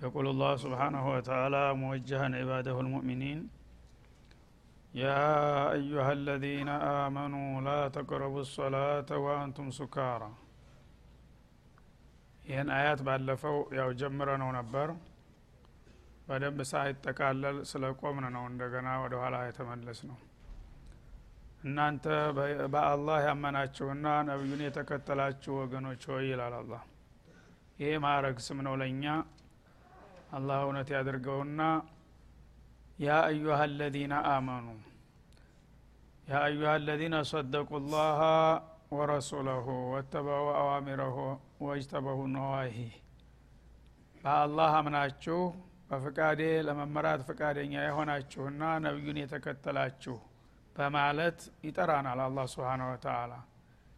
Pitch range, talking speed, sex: 130-150 Hz, 80 wpm, male